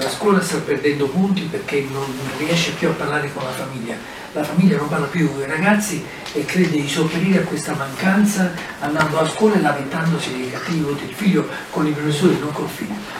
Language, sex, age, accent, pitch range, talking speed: Italian, male, 50-69, native, 145-185 Hz, 200 wpm